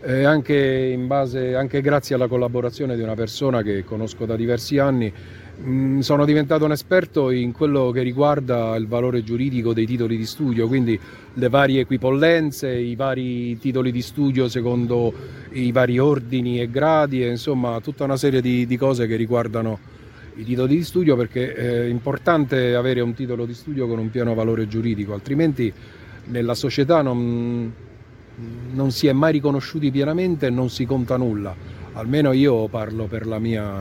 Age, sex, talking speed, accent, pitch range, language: 40-59, male, 165 wpm, native, 115-140 Hz, Italian